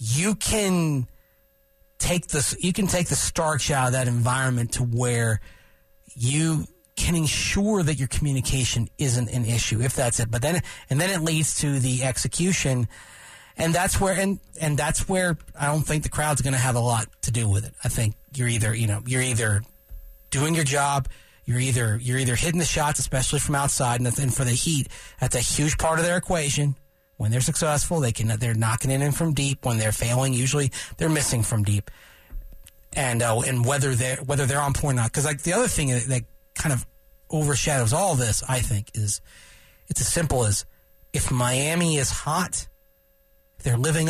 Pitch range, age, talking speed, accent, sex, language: 110-150 Hz, 40-59, 195 wpm, American, male, English